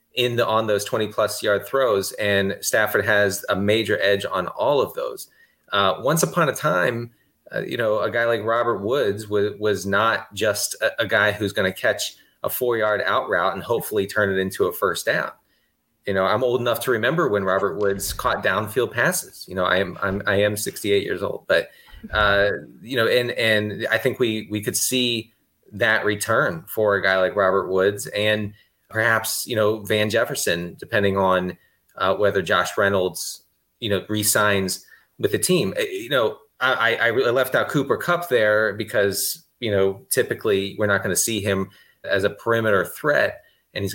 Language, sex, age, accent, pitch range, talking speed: English, male, 30-49, American, 100-120 Hz, 195 wpm